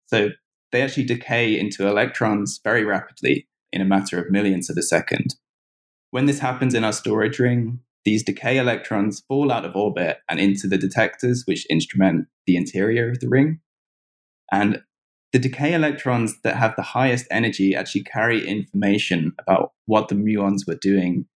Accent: British